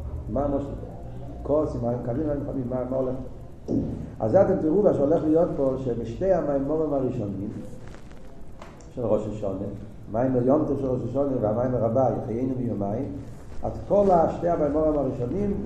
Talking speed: 140 wpm